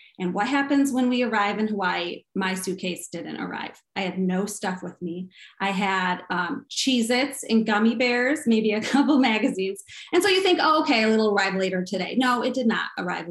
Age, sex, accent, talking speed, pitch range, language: 20-39, female, American, 205 wpm, 185-235 Hz, English